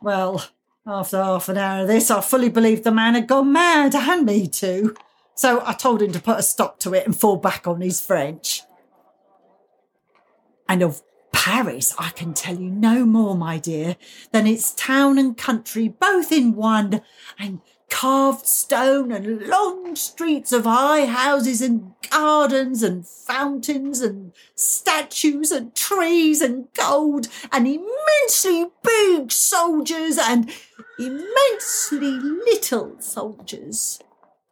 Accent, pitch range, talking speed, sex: British, 200-300 Hz, 140 wpm, female